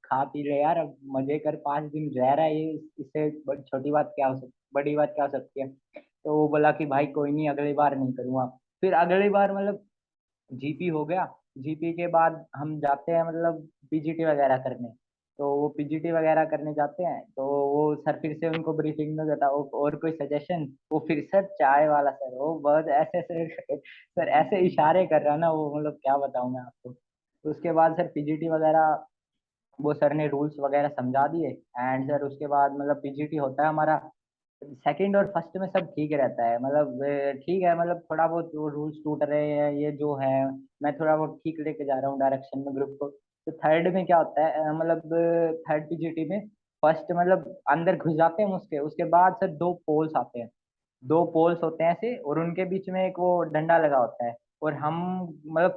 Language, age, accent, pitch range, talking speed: Hindi, 20-39, native, 140-165 Hz, 200 wpm